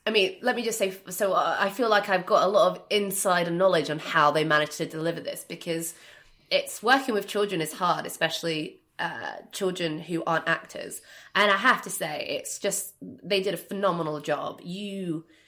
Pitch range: 155-200 Hz